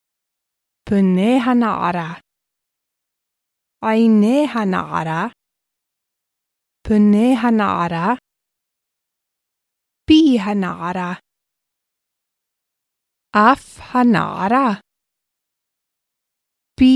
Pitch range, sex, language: 190-255 Hz, female, Hebrew